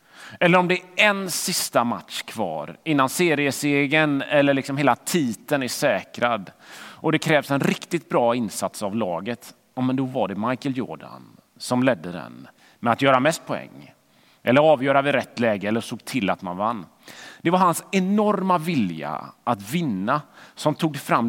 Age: 30-49